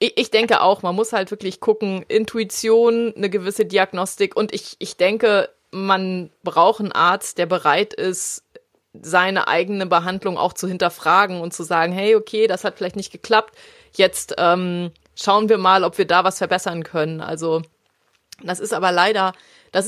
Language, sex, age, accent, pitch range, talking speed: German, female, 30-49, German, 175-220 Hz, 170 wpm